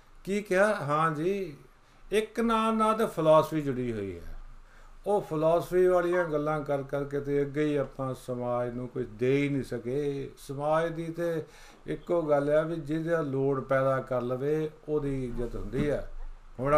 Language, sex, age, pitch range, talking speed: Punjabi, male, 50-69, 120-170 Hz, 165 wpm